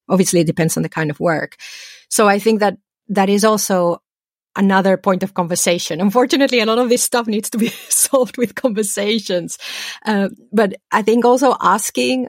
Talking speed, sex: 180 wpm, female